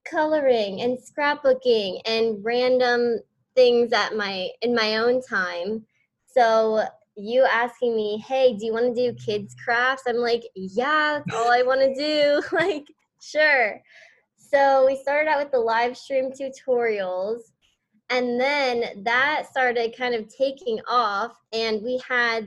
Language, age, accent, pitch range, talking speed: English, 20-39, American, 225-275 Hz, 145 wpm